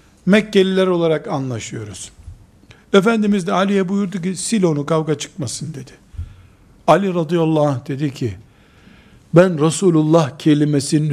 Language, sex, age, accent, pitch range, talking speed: Turkish, male, 60-79, native, 110-175 Hz, 110 wpm